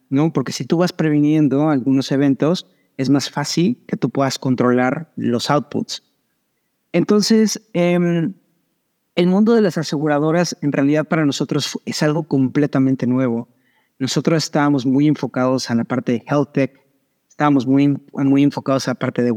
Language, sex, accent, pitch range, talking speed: Spanish, male, Mexican, 130-155 Hz, 155 wpm